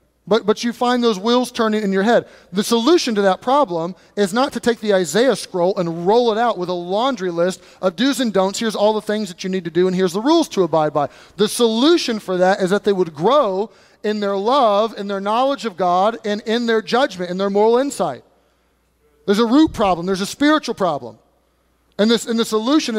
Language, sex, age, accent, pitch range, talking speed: English, male, 30-49, American, 185-235 Hz, 230 wpm